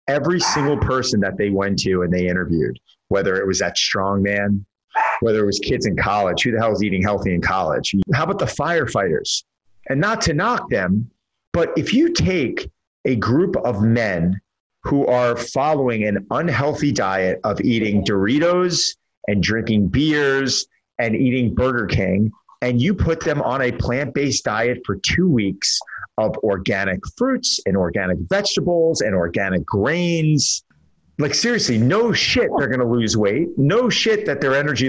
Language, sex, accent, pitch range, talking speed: English, male, American, 100-135 Hz, 165 wpm